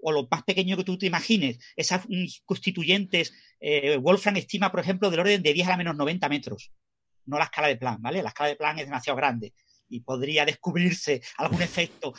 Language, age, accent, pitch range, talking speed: Spanish, 40-59, Spanish, 155-225 Hz, 205 wpm